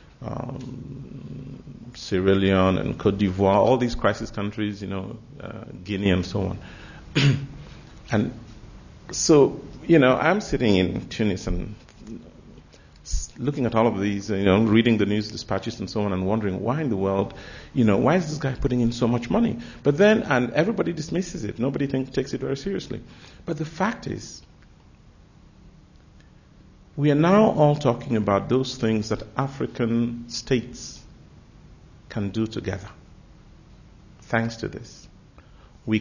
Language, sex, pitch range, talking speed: English, male, 100-125 Hz, 150 wpm